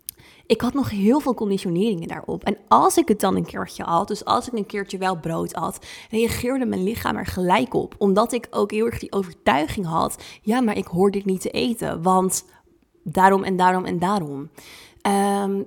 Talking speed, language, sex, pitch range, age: 200 wpm, Dutch, female, 185-210 Hz, 20-39